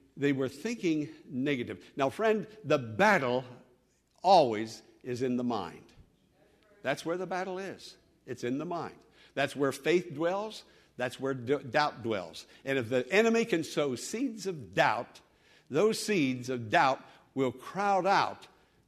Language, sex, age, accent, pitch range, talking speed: English, male, 60-79, American, 130-200 Hz, 145 wpm